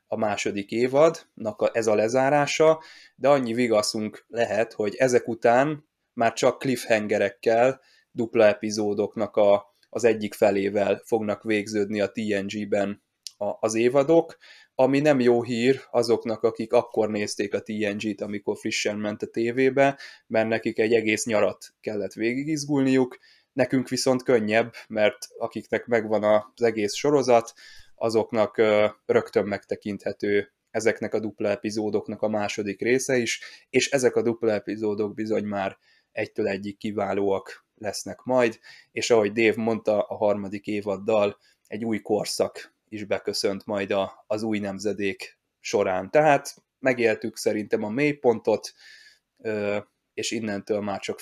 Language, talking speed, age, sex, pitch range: Hungarian, 125 wpm, 20-39, male, 105-125 Hz